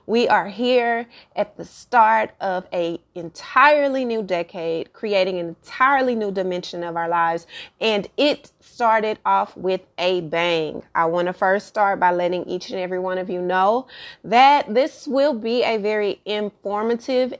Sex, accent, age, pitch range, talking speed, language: female, American, 30-49, 180-225 Hz, 160 wpm, English